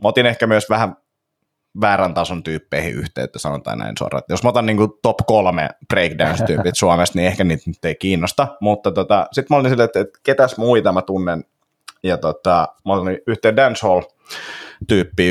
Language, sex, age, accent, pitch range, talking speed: Finnish, male, 30-49, native, 90-110 Hz, 165 wpm